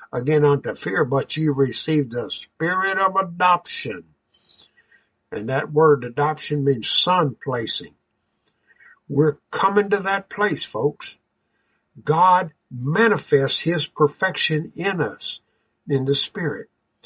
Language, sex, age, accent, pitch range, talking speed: English, male, 60-79, American, 140-180 Hz, 115 wpm